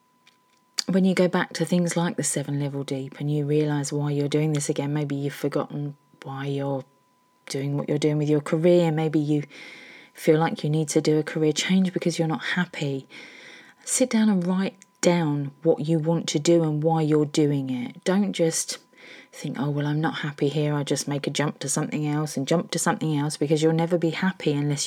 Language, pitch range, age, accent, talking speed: English, 150-185 Hz, 30-49, British, 215 wpm